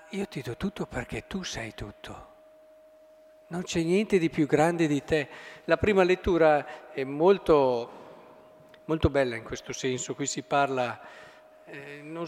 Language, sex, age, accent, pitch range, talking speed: Italian, male, 50-69, native, 155-215 Hz, 150 wpm